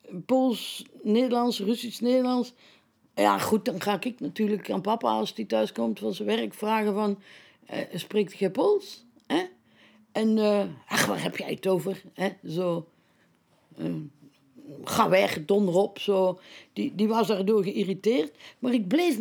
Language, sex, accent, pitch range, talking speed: Dutch, female, Dutch, 185-250 Hz, 155 wpm